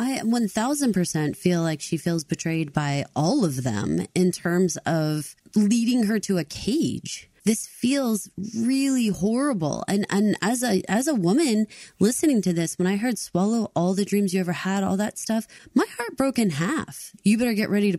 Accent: American